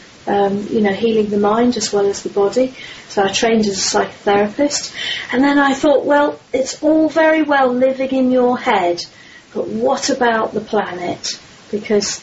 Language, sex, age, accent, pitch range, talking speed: English, female, 40-59, British, 200-255 Hz, 175 wpm